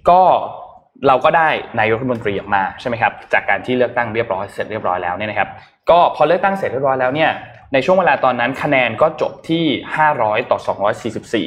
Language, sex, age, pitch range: Thai, male, 20-39, 115-150 Hz